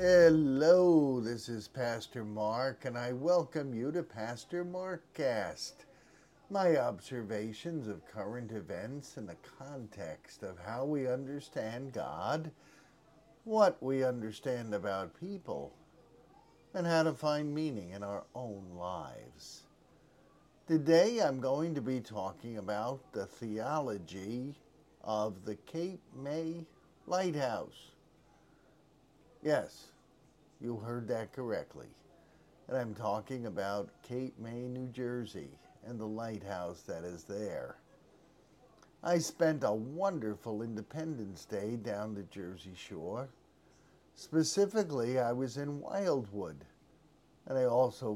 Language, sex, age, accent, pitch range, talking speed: English, male, 50-69, American, 105-150 Hz, 110 wpm